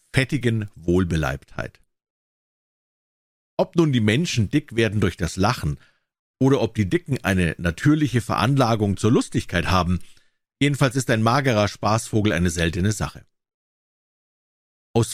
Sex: male